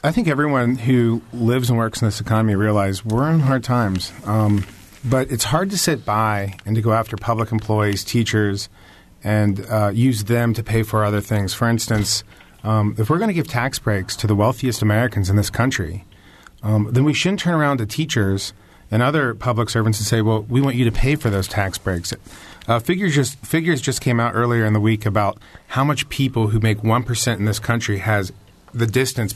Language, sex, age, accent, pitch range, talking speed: English, male, 40-59, American, 105-125 Hz, 210 wpm